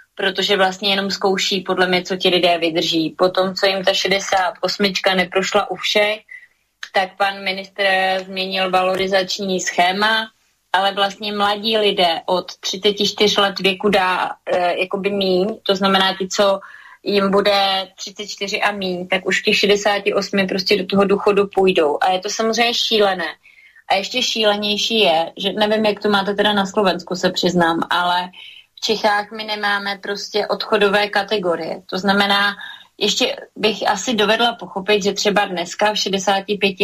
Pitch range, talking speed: 185-205 Hz, 150 wpm